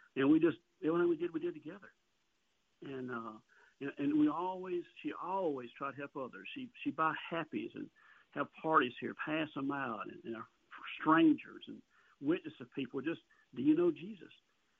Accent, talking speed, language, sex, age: American, 180 wpm, English, male, 60-79